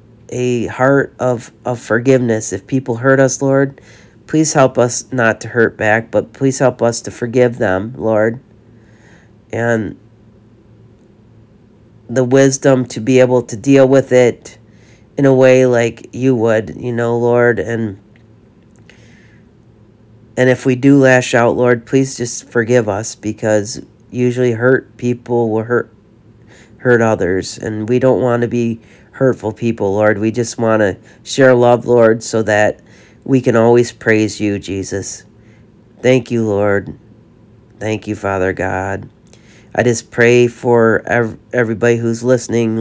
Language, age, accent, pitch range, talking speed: English, 40-59, American, 110-125 Hz, 145 wpm